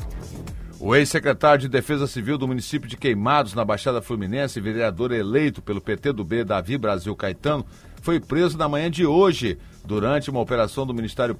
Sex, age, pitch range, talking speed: male, 60-79, 105-150 Hz, 170 wpm